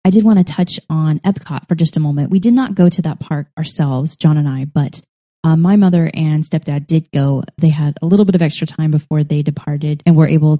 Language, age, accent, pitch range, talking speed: English, 20-39, American, 150-170 Hz, 250 wpm